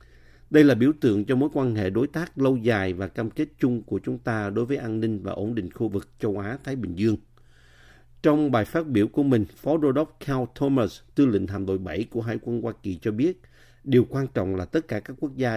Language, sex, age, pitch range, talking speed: Vietnamese, male, 50-69, 105-130 Hz, 245 wpm